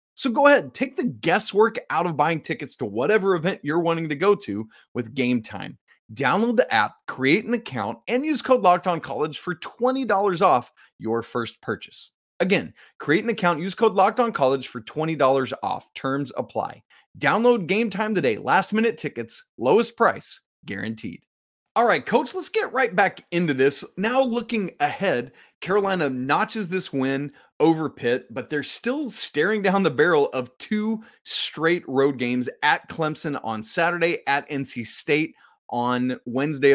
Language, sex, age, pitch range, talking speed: English, male, 30-49, 135-210 Hz, 165 wpm